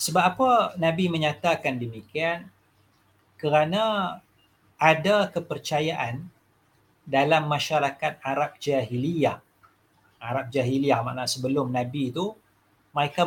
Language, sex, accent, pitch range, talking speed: English, male, Indonesian, 125-175 Hz, 85 wpm